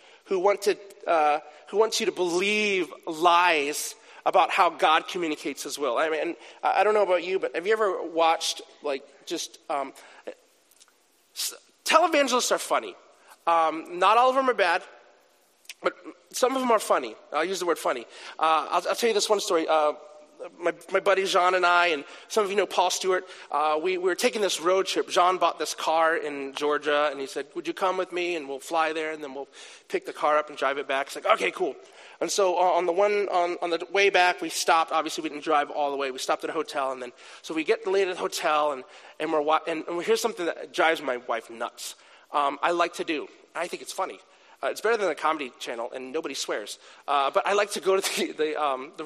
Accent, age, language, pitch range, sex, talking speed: American, 30-49, English, 155-210 Hz, male, 230 wpm